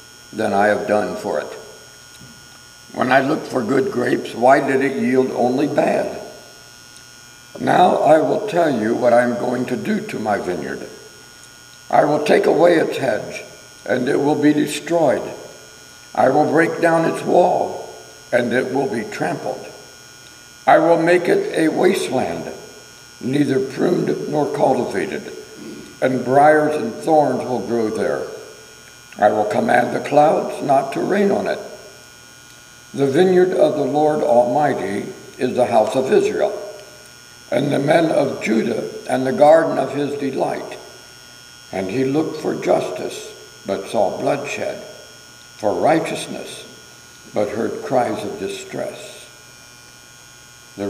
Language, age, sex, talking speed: English, 60-79, male, 140 wpm